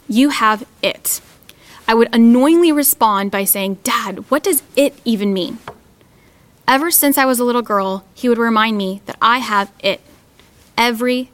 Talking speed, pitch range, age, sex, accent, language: 165 wpm, 200-250 Hz, 10-29, female, American, English